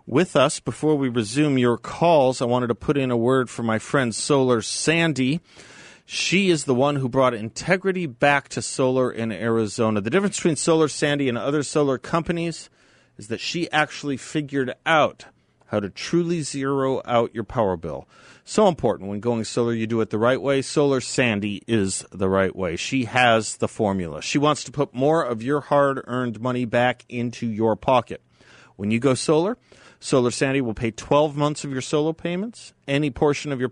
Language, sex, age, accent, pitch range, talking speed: English, male, 40-59, American, 120-155 Hz, 190 wpm